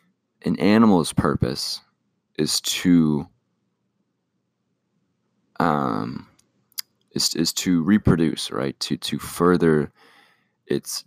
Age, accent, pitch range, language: 20-39, American, 80-95 Hz, English